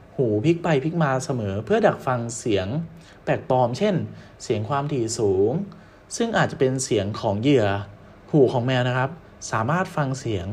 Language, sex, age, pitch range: Thai, male, 20-39, 105-160 Hz